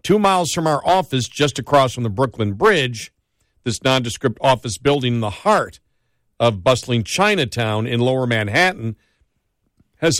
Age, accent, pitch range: 50-69, American, 120-150 Hz